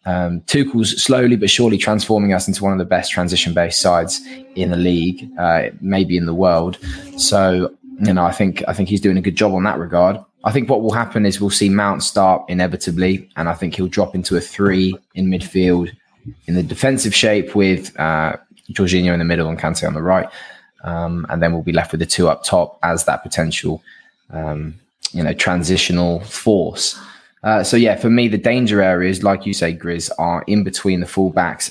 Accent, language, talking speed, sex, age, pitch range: British, English, 205 wpm, male, 20-39, 85-105 Hz